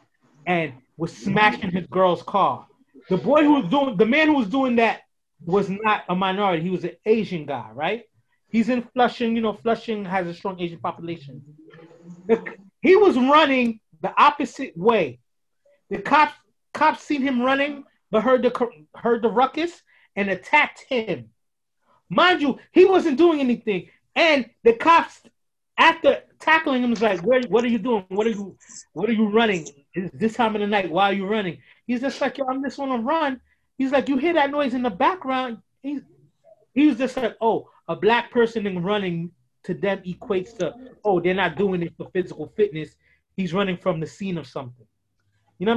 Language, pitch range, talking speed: English, 185-265 Hz, 190 wpm